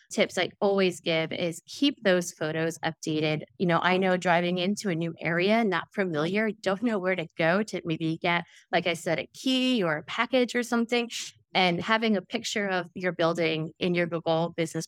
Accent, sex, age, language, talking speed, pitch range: American, female, 20-39, English, 200 wpm, 165-205 Hz